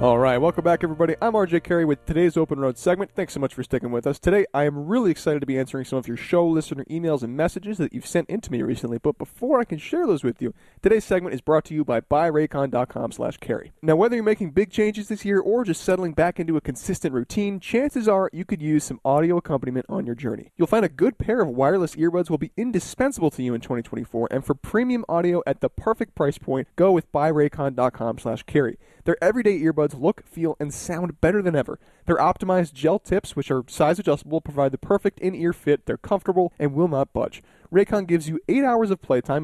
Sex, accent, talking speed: male, American, 230 wpm